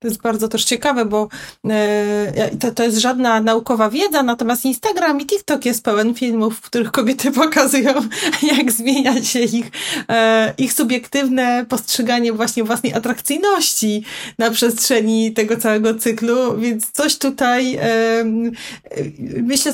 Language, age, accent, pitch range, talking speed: Polish, 30-49, native, 210-245 Hz, 125 wpm